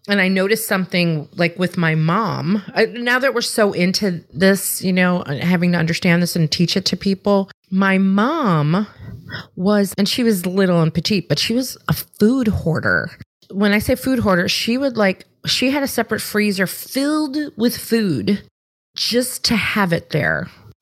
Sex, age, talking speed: female, 30-49, 175 wpm